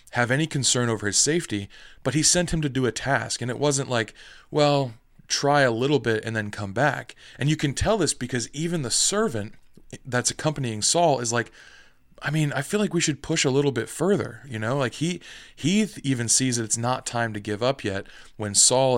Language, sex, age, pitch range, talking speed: English, male, 20-39, 110-145 Hz, 220 wpm